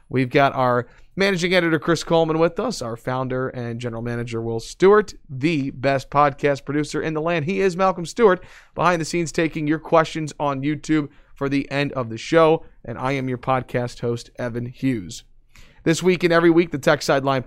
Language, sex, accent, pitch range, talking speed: English, male, American, 130-165 Hz, 195 wpm